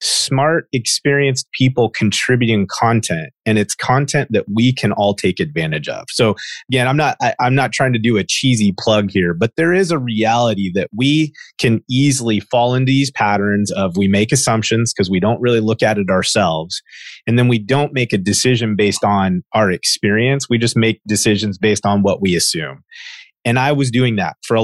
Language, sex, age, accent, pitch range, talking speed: English, male, 30-49, American, 105-130 Hz, 195 wpm